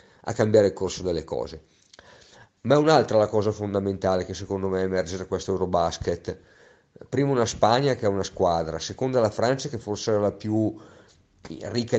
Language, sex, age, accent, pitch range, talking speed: Italian, male, 50-69, native, 90-110 Hz, 170 wpm